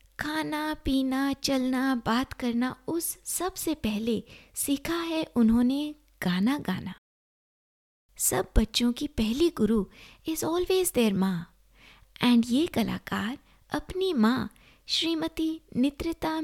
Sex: female